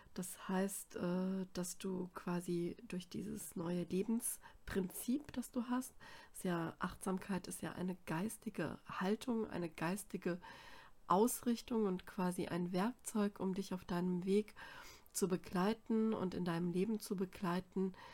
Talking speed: 130 wpm